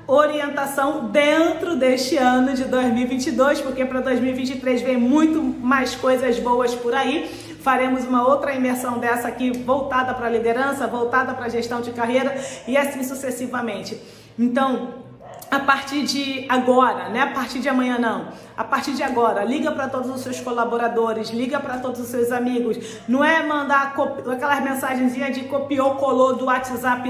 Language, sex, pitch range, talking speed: English, female, 235-275 Hz, 155 wpm